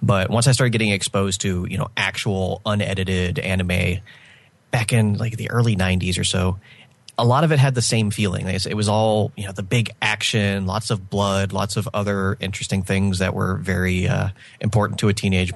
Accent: American